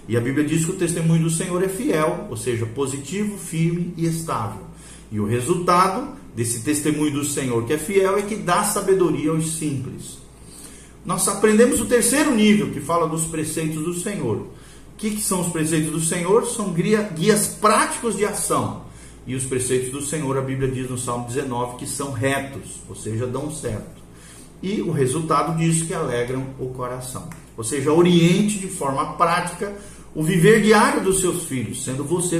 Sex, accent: male, Brazilian